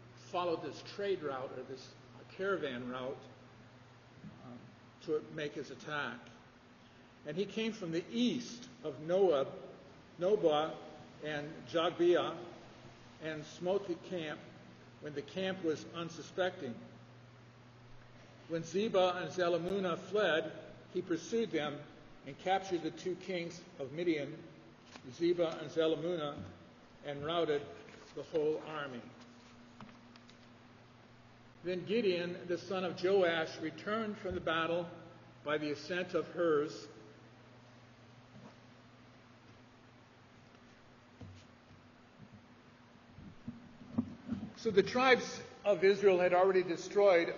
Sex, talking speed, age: male, 100 wpm, 50-69